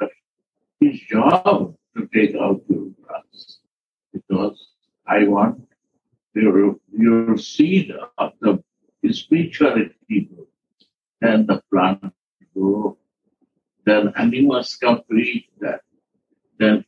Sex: male